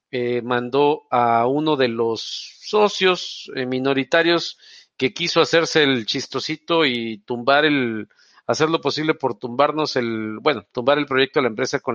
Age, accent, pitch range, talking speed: 50-69, Mexican, 130-180 Hz, 155 wpm